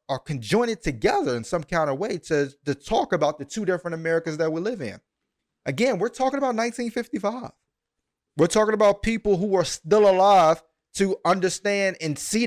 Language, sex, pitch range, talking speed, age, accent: English, male, 140-190 Hz, 180 wpm, 30-49, American